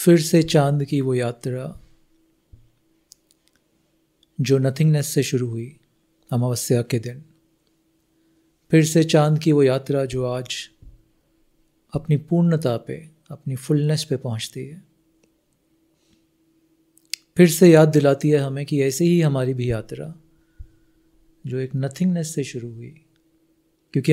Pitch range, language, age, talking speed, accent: 130-160 Hz, Hindi, 40-59, 120 wpm, native